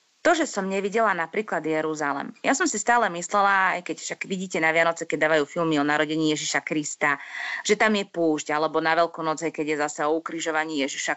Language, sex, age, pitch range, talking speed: Slovak, female, 30-49, 160-200 Hz, 205 wpm